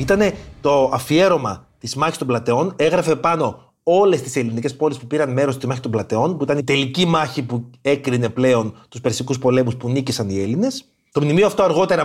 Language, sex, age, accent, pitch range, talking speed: Greek, male, 30-49, native, 125-195 Hz, 195 wpm